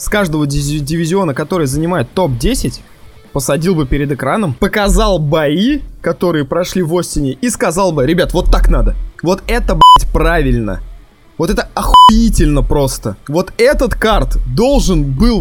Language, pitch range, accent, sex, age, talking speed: Russian, 145-190 Hz, native, male, 20-39, 140 wpm